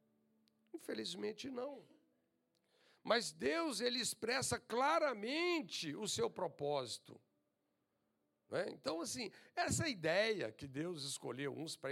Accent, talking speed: Brazilian, 105 wpm